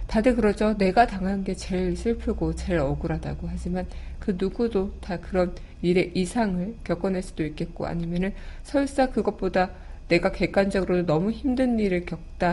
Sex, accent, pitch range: female, native, 170-215 Hz